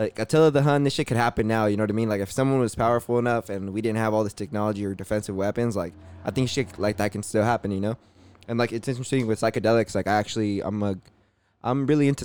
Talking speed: 275 wpm